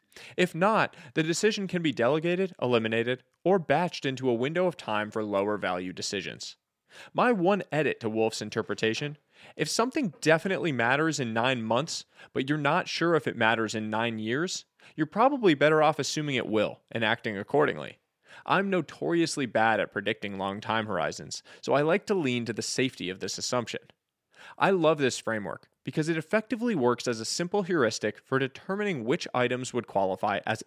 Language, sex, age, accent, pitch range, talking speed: English, male, 20-39, American, 115-175 Hz, 175 wpm